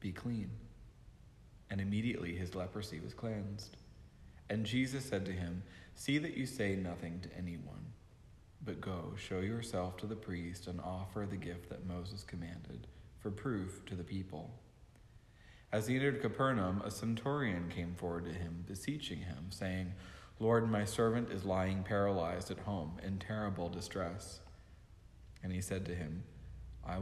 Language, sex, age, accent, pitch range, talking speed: English, male, 40-59, American, 90-105 Hz, 155 wpm